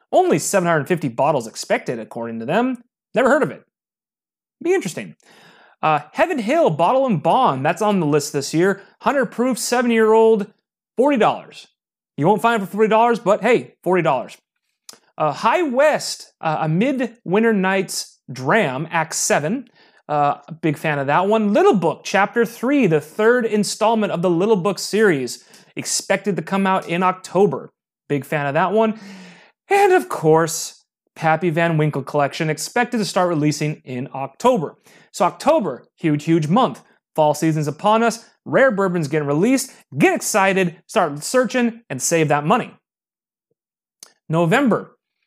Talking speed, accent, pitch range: 145 wpm, American, 155-220 Hz